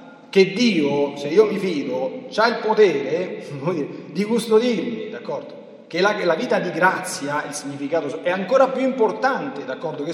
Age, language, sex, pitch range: 40-59, Italian, male, 145-235 Hz